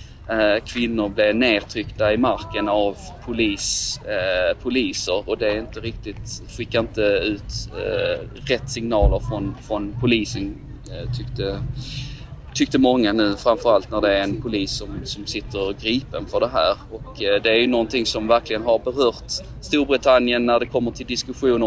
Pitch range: 105-125 Hz